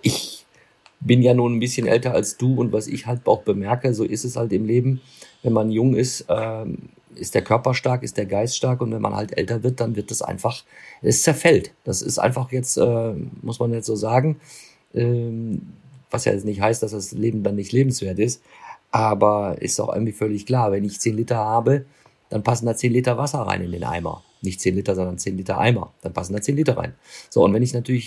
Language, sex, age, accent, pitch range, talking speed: German, male, 50-69, German, 105-125 Hz, 230 wpm